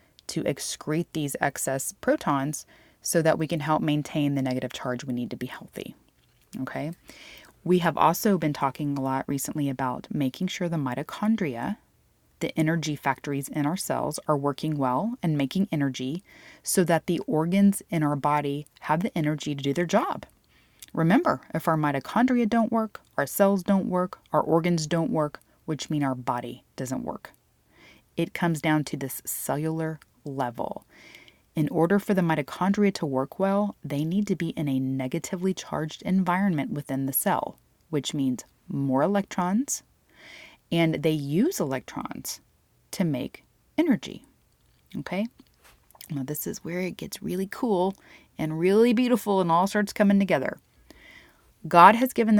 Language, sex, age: English, female, 20-39